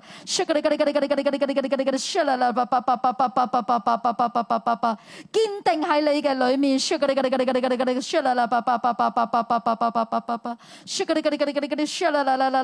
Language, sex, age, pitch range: Chinese, female, 30-49, 255-345 Hz